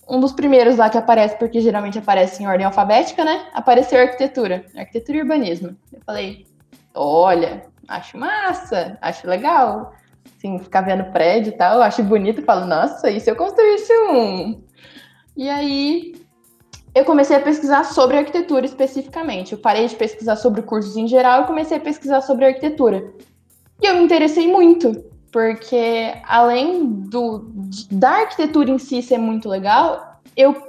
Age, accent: 20-39, Brazilian